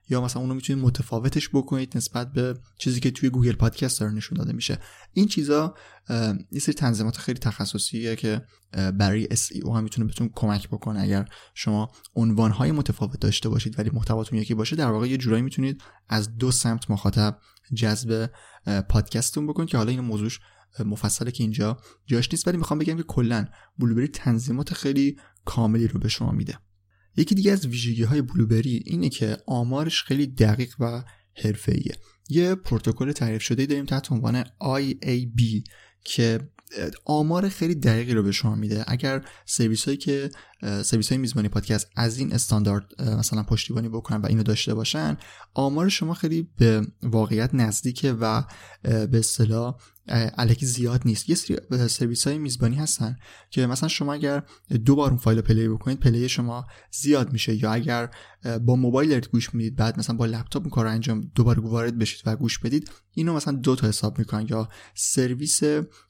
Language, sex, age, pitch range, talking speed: Persian, male, 20-39, 110-135 Hz, 165 wpm